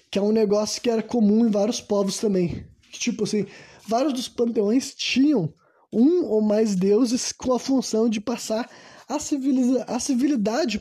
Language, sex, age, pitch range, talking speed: Portuguese, male, 20-39, 190-235 Hz, 165 wpm